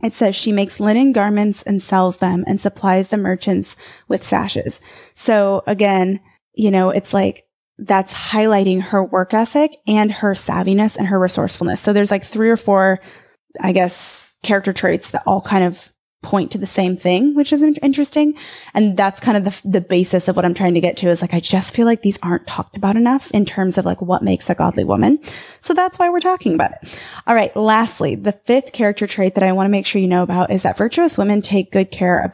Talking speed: 220 wpm